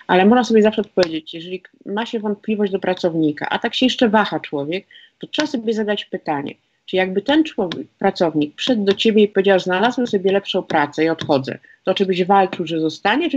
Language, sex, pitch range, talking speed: Polish, female, 175-220 Hz, 205 wpm